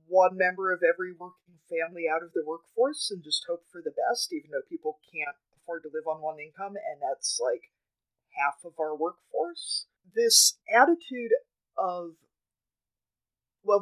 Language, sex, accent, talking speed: English, female, American, 160 wpm